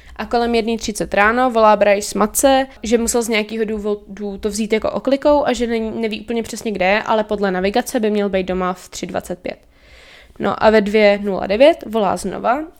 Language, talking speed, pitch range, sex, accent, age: Czech, 180 wpm, 200-235 Hz, female, native, 20-39